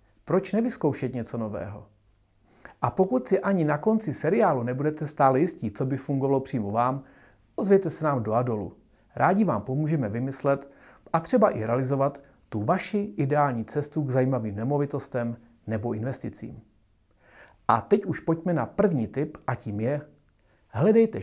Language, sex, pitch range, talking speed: Czech, male, 120-170 Hz, 145 wpm